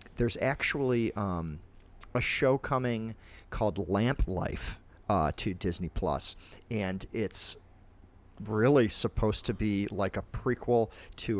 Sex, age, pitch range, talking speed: male, 40-59, 95-125 Hz, 120 wpm